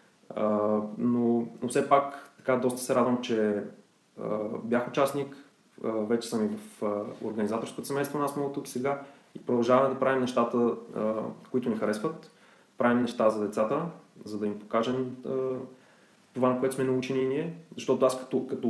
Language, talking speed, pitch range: Bulgarian, 175 wpm, 110-135 Hz